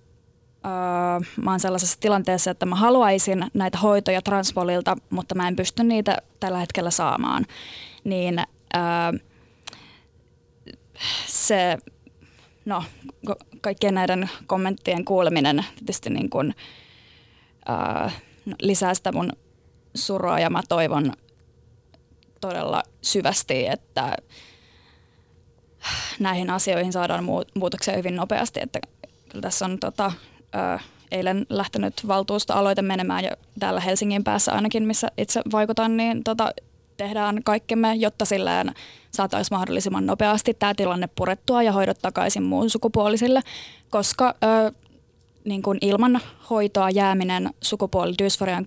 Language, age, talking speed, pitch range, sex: Finnish, 20-39, 110 wpm, 185-210 Hz, female